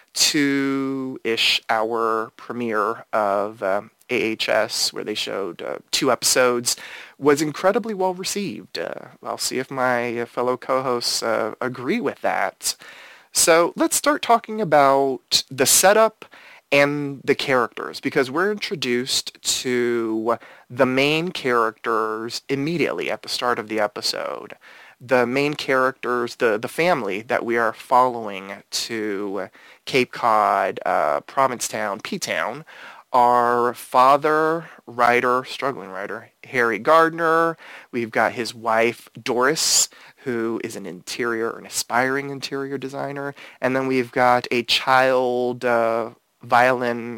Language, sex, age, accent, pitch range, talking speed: English, male, 30-49, American, 115-140 Hz, 115 wpm